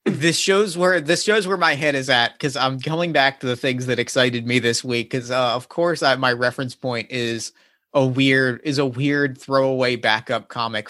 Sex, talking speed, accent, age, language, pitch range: male, 205 wpm, American, 30-49, English, 125-160 Hz